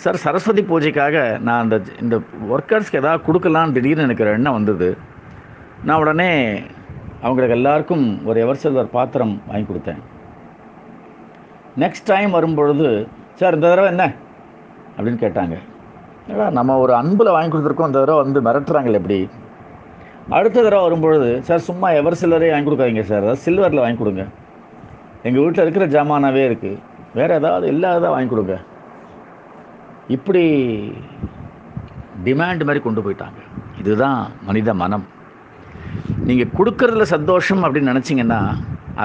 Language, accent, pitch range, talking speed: Tamil, native, 110-170 Hz, 120 wpm